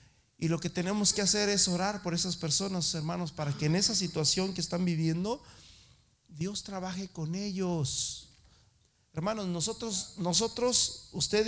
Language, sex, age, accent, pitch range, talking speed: Spanish, male, 40-59, Mexican, 135-175 Hz, 145 wpm